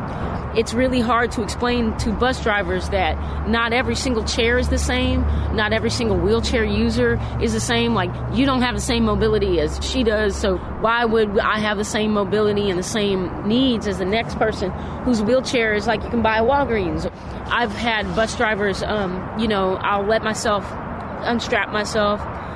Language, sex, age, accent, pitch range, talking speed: English, female, 30-49, American, 185-225 Hz, 190 wpm